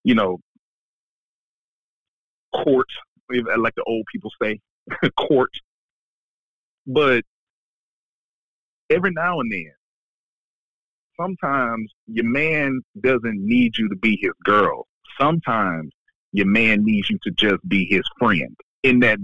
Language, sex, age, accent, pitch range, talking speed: English, male, 30-49, American, 110-175 Hz, 110 wpm